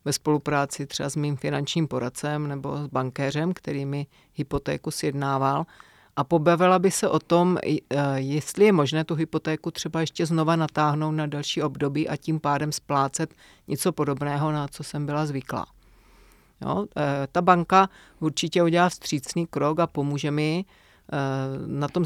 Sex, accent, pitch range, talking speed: female, native, 140-165 Hz, 145 wpm